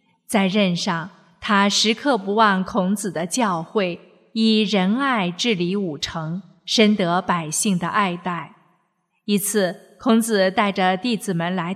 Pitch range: 180-220 Hz